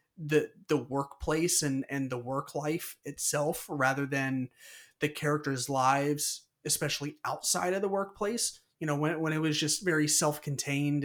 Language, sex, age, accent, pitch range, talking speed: English, male, 30-49, American, 135-160 Hz, 160 wpm